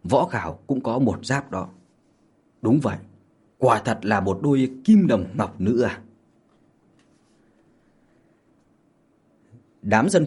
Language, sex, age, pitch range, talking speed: Vietnamese, male, 20-39, 100-150 Hz, 115 wpm